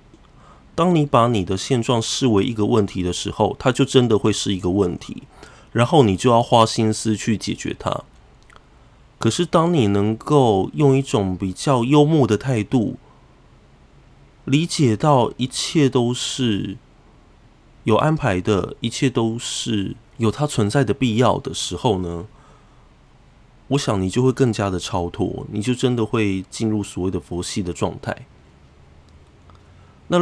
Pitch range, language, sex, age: 95-130 Hz, Chinese, male, 20-39